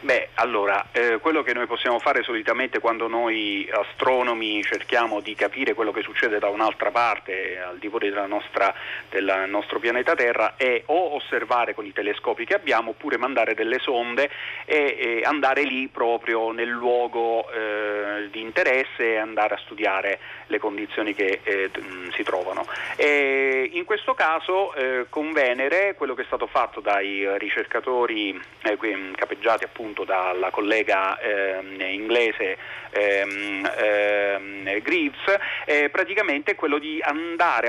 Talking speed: 140 wpm